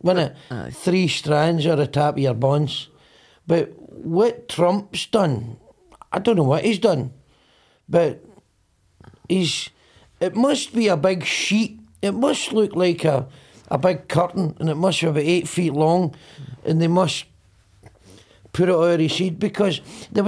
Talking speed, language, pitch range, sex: 155 wpm, English, 145-190 Hz, male